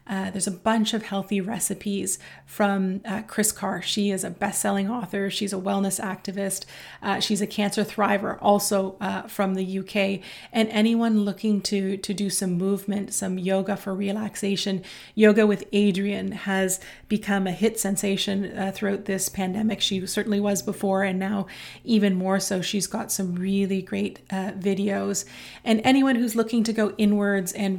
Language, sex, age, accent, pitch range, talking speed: English, female, 30-49, American, 190-210 Hz, 170 wpm